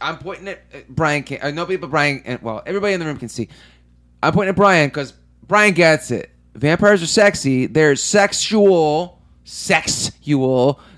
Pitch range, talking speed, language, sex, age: 115-155 Hz, 170 wpm, English, male, 30-49